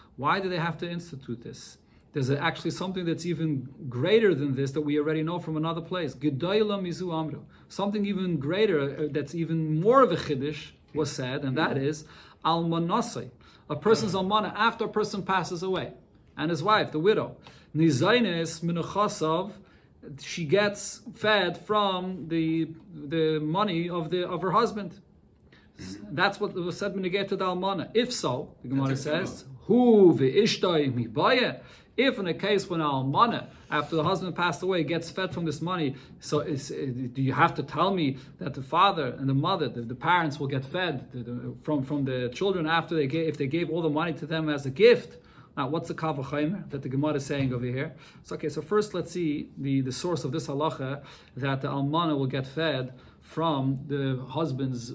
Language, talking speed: English, 185 wpm